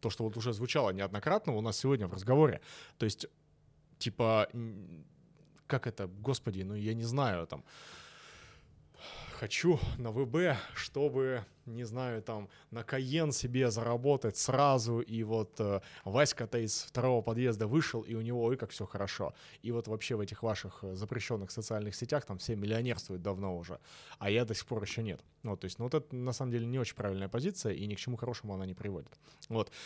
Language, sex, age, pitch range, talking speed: Russian, male, 20-39, 105-135 Hz, 185 wpm